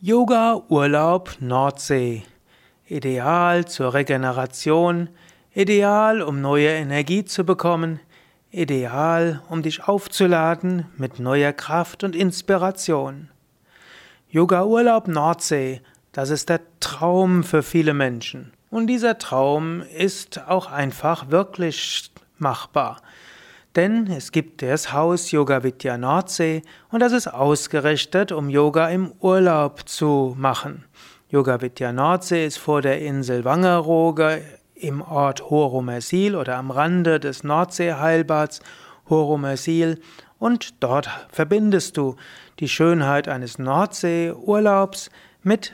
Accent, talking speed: German, 110 wpm